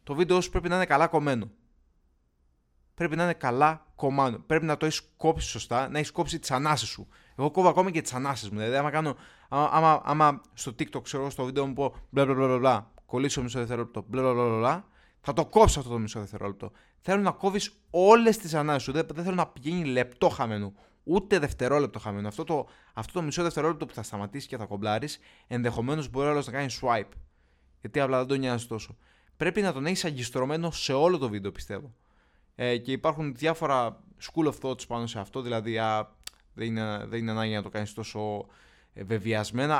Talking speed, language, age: 190 wpm, Greek, 20-39